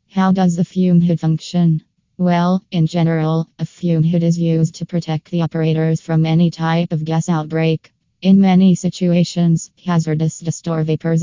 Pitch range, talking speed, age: 160-180 Hz, 160 wpm, 20-39